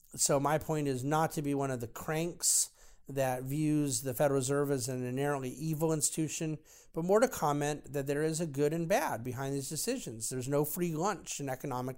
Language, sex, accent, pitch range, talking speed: English, male, American, 130-155 Hz, 205 wpm